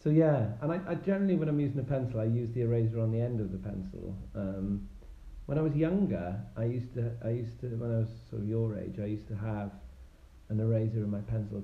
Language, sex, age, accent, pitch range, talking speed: English, male, 40-59, British, 95-120 Hz, 245 wpm